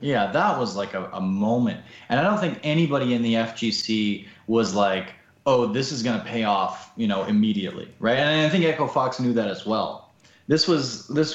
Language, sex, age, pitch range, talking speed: English, male, 20-39, 110-150 Hz, 210 wpm